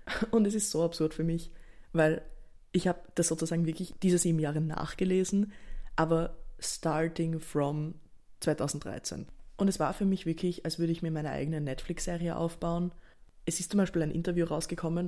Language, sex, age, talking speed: German, female, 20-39, 165 wpm